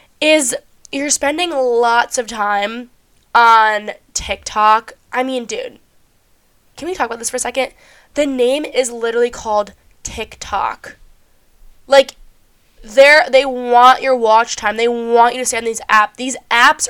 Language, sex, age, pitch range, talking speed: English, female, 10-29, 225-270 Hz, 150 wpm